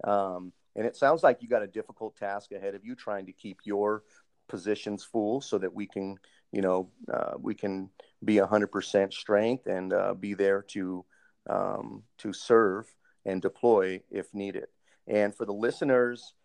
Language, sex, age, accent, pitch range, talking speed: English, male, 40-59, American, 100-125 Hz, 175 wpm